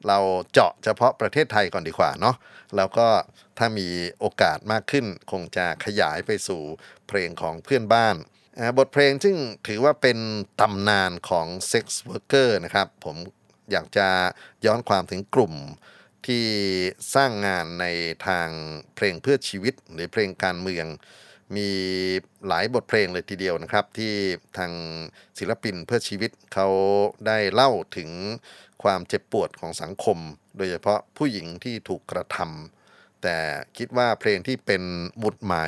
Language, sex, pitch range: Thai, male, 90-115 Hz